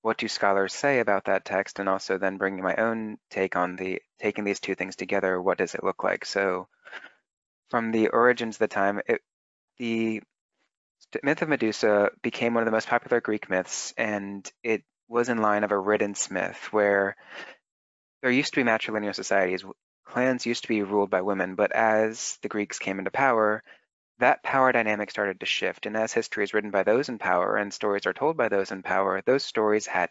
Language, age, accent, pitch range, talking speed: English, 20-39, American, 95-115 Hz, 200 wpm